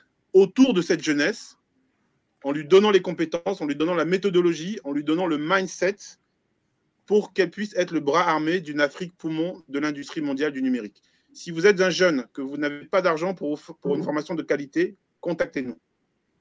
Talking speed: 185 wpm